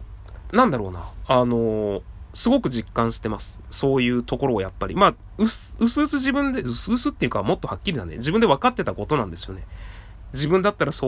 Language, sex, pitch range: Japanese, male, 95-145 Hz